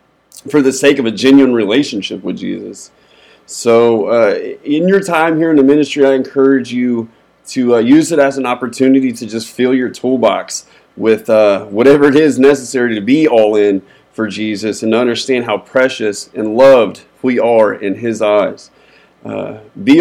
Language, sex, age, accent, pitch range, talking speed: English, male, 30-49, American, 115-145 Hz, 175 wpm